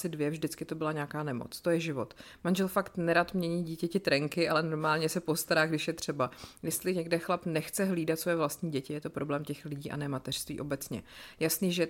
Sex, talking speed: female, 205 wpm